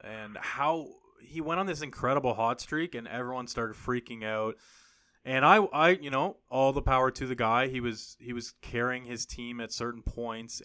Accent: American